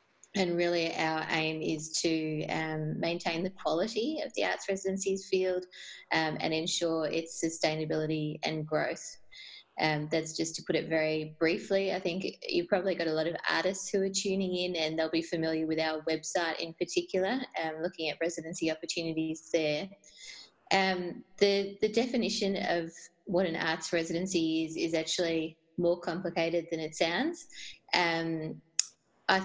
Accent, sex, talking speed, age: Australian, female, 155 wpm, 20-39